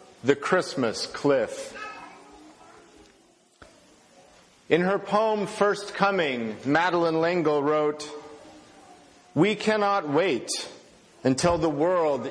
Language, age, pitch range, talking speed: English, 50-69, 155-220 Hz, 85 wpm